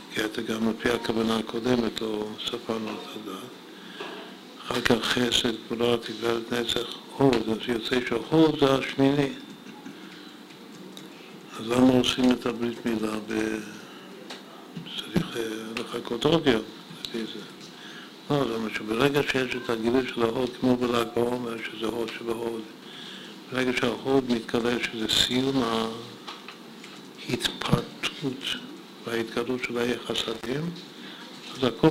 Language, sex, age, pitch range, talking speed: Hebrew, male, 60-79, 115-135 Hz, 110 wpm